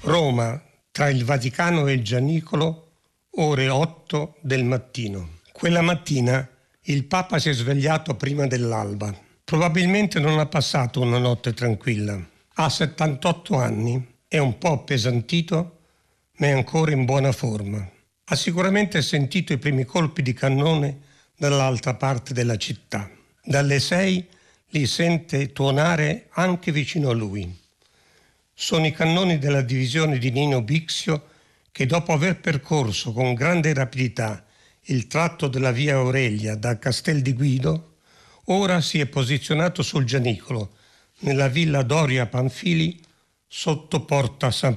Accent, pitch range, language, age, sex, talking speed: native, 125-160 Hz, Italian, 60-79, male, 130 wpm